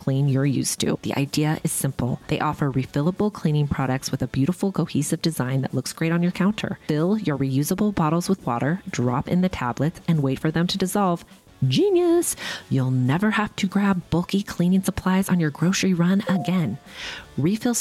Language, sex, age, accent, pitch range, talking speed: English, female, 30-49, American, 145-200 Hz, 185 wpm